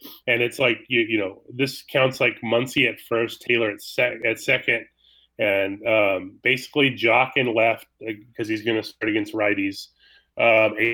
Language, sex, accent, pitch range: English, male, American, 110-140 Hz